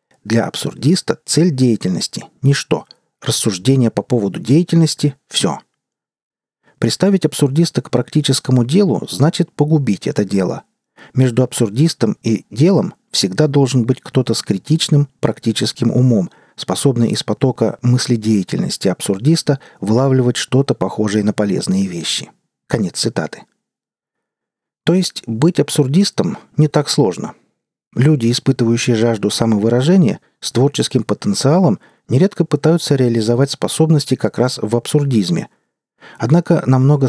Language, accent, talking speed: Russian, native, 115 wpm